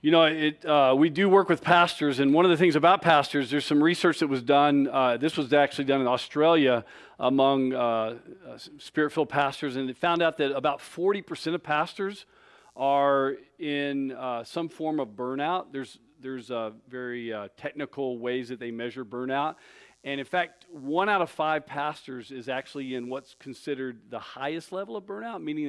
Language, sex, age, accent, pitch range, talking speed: English, male, 40-59, American, 125-150 Hz, 185 wpm